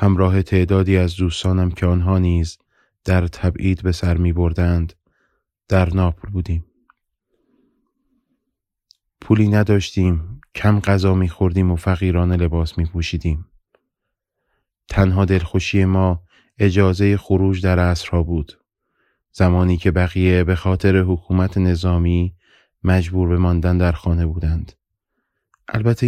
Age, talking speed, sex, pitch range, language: 30-49, 115 wpm, male, 90-105 Hz, Persian